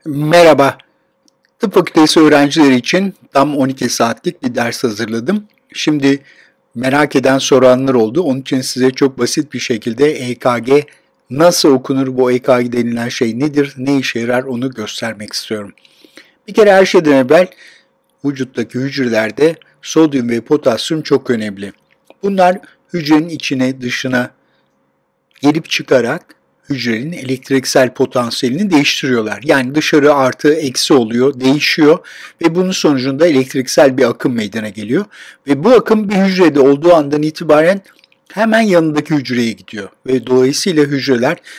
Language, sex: Turkish, male